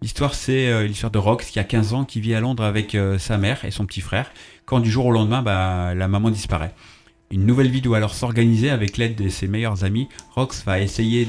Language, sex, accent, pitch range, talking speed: French, male, French, 95-120 Hz, 245 wpm